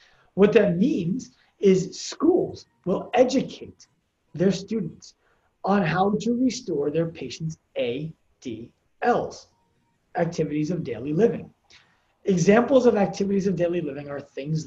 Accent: American